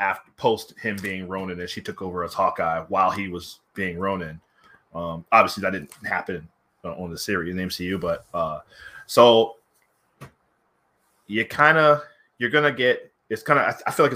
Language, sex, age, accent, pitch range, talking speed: English, male, 20-39, American, 95-115 Hz, 175 wpm